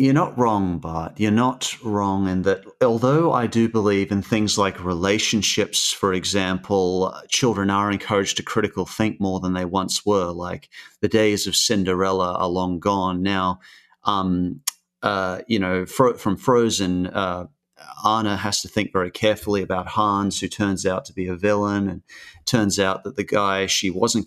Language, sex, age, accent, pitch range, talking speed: English, male, 30-49, Australian, 95-110 Hz, 170 wpm